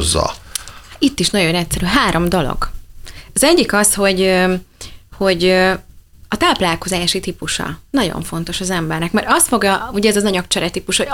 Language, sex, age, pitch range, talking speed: Hungarian, female, 30-49, 170-210 Hz, 145 wpm